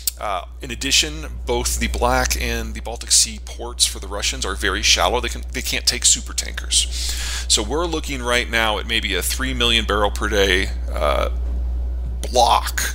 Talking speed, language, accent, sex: 175 wpm, English, American, male